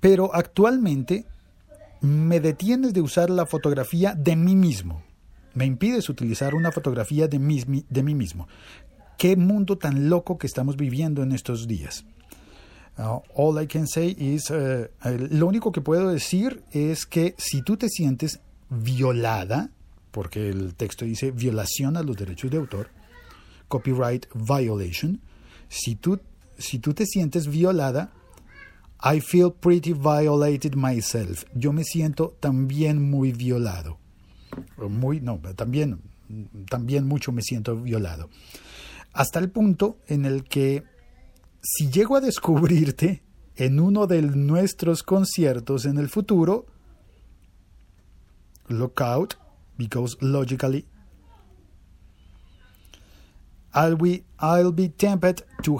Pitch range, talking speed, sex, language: 110-165 Hz, 120 wpm, male, Spanish